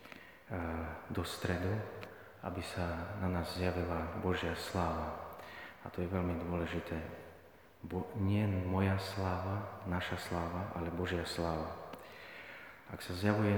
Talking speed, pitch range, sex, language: 115 wpm, 85-95 Hz, male, Slovak